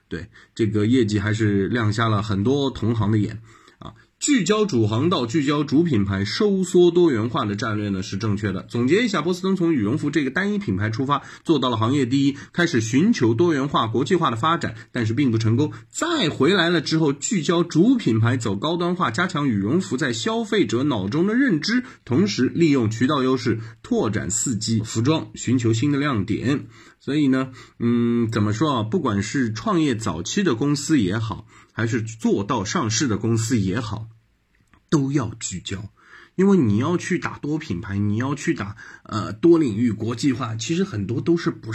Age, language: 20-39, Chinese